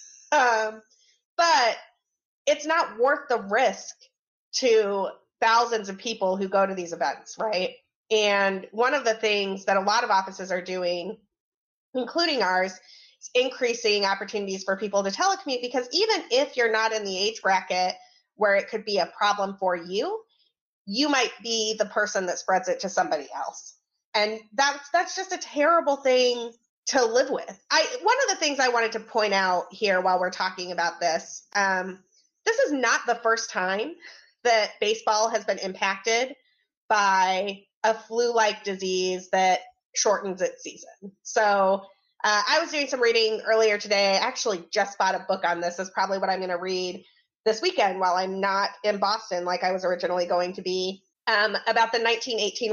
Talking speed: 175 wpm